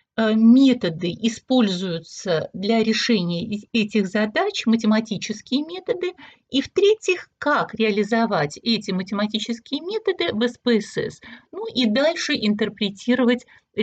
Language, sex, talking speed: Russian, female, 90 wpm